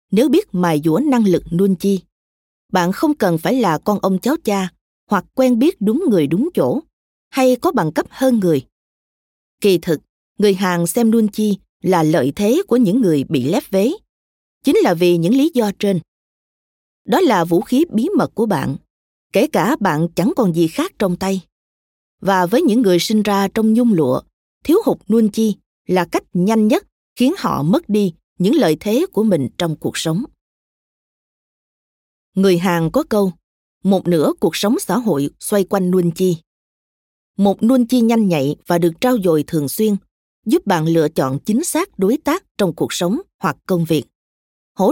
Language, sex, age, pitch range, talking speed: Vietnamese, female, 20-39, 165-230 Hz, 185 wpm